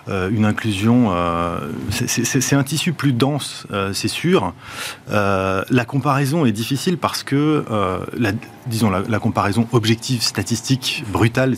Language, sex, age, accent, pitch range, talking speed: French, male, 30-49, French, 100-125 Hz, 155 wpm